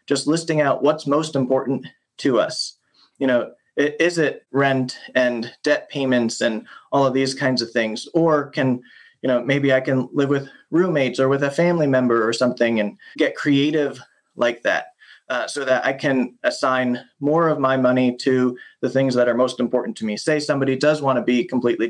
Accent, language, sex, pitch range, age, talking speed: American, English, male, 130-150 Hz, 30-49, 195 wpm